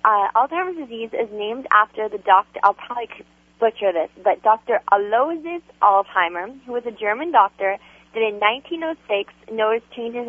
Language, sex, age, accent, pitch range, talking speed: English, female, 20-39, American, 200-255 Hz, 150 wpm